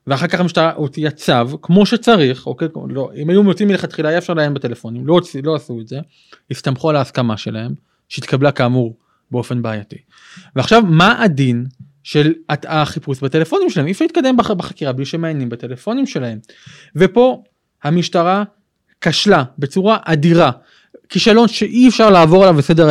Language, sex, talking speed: Hebrew, male, 145 wpm